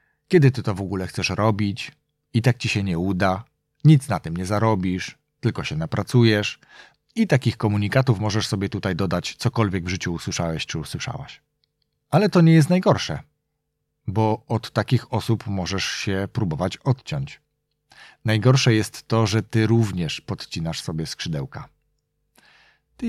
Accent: native